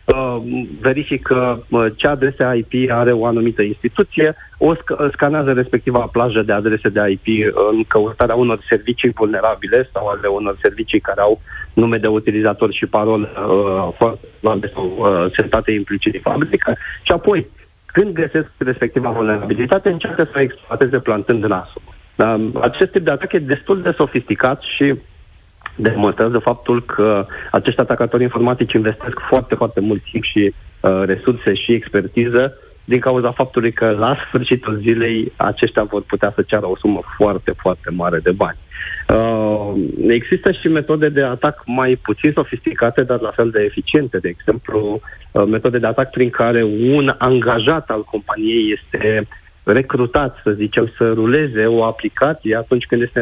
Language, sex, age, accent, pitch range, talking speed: Romanian, male, 40-59, native, 110-130 Hz, 150 wpm